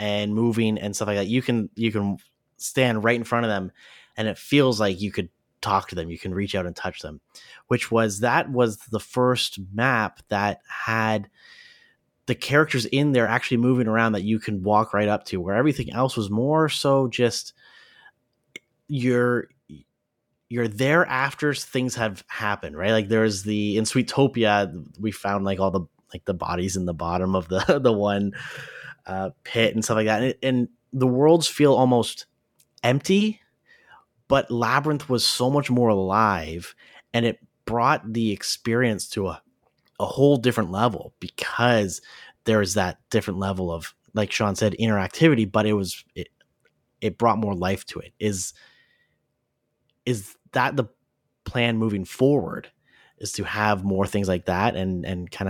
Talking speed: 170 wpm